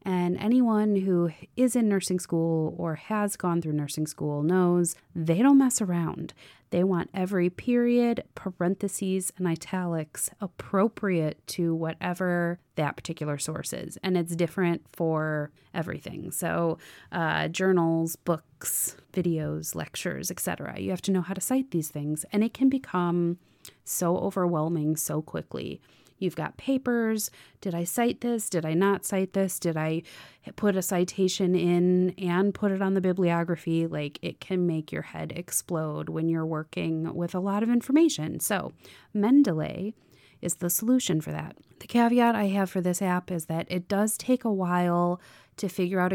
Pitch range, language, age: 165-200 Hz, English, 30-49